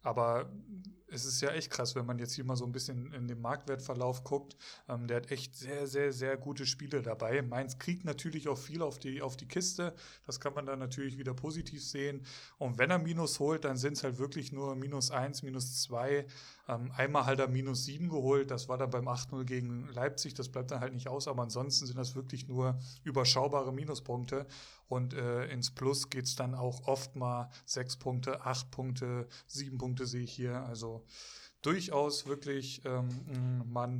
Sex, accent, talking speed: male, German, 200 wpm